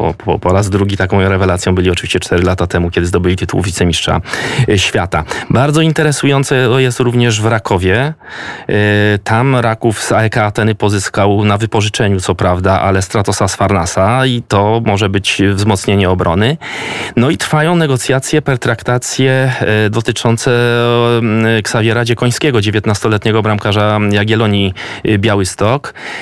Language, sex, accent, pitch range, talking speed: Polish, male, native, 100-110 Hz, 125 wpm